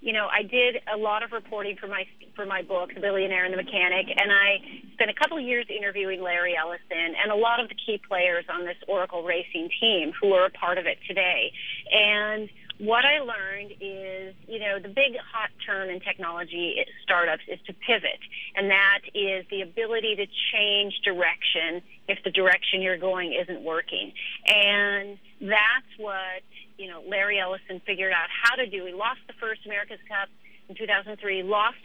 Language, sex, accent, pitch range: English, female, American, 190-220 Hz